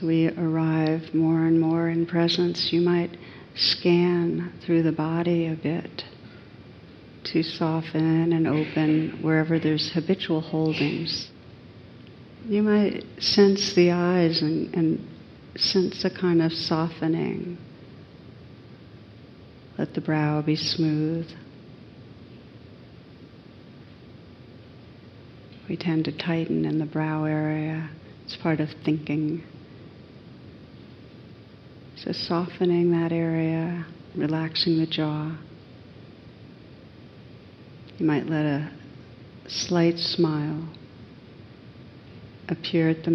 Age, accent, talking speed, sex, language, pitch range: 60-79, American, 95 wpm, female, English, 150-165 Hz